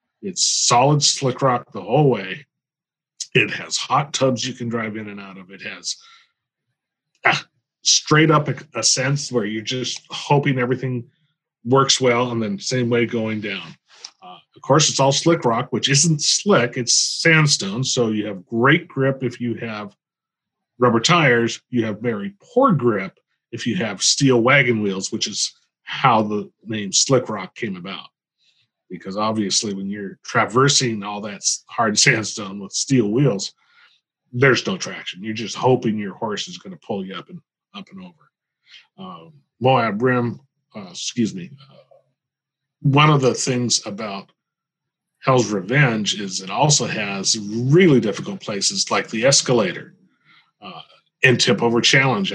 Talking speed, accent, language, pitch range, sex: 160 wpm, American, English, 115-155 Hz, male